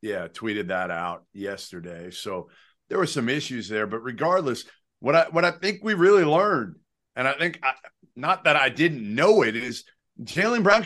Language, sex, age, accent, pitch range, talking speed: English, male, 40-59, American, 135-185 Hz, 190 wpm